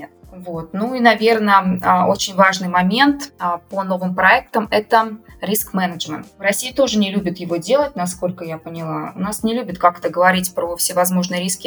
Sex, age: female, 20-39